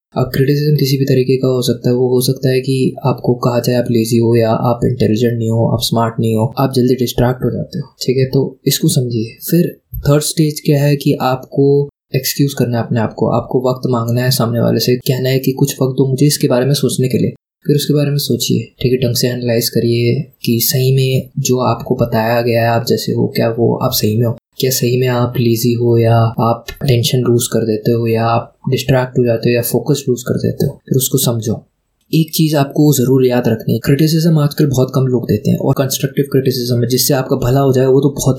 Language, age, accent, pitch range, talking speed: Hindi, 20-39, native, 120-140 Hz, 245 wpm